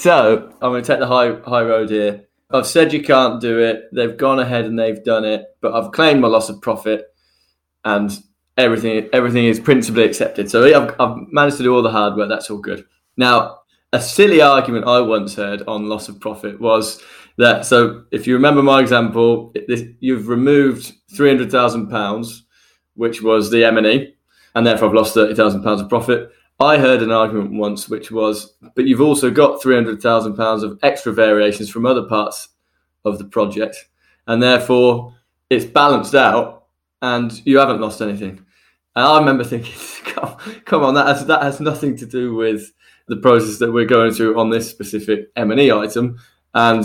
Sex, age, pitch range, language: male, 20-39, 105-125 Hz, English